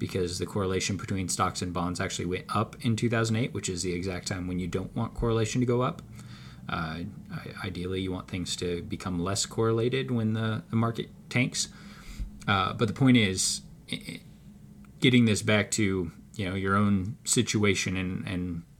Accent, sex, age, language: American, male, 20-39, English